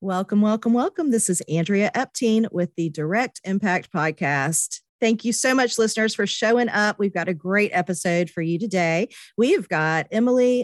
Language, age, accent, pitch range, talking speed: English, 40-59, American, 170-230 Hz, 175 wpm